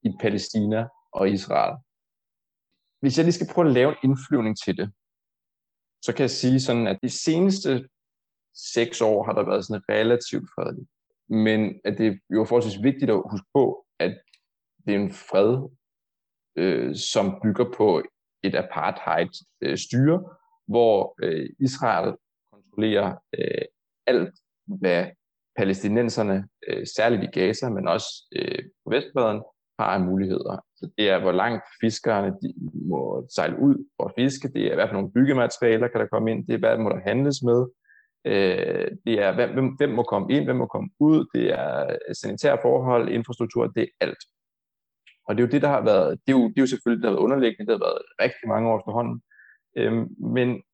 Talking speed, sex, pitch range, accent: 165 wpm, male, 110-145 Hz, native